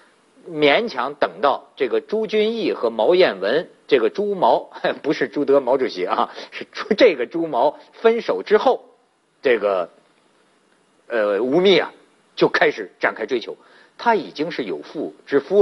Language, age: Chinese, 50-69